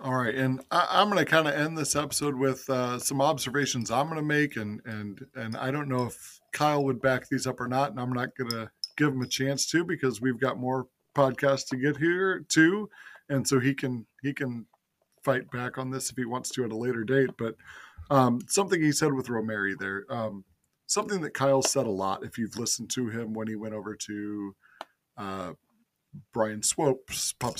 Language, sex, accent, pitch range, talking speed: English, male, American, 115-145 Hz, 215 wpm